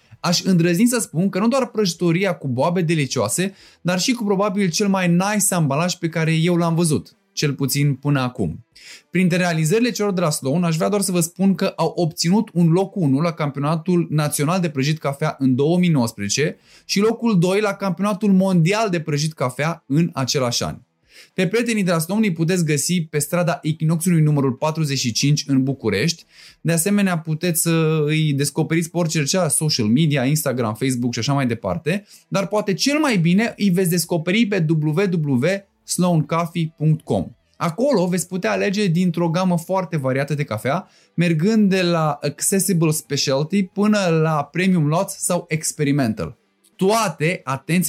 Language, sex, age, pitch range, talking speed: Romanian, male, 20-39, 145-190 Hz, 165 wpm